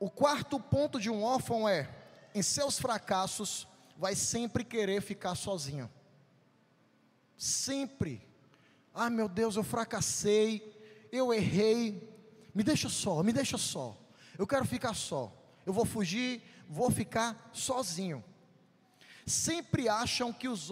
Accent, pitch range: Brazilian, 195-245 Hz